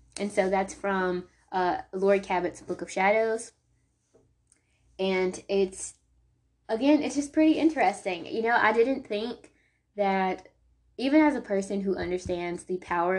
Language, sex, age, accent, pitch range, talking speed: English, female, 20-39, American, 170-200 Hz, 140 wpm